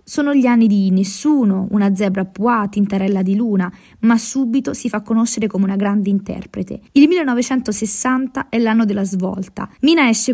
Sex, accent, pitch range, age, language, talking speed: female, native, 195-255 Hz, 20-39, Italian, 165 wpm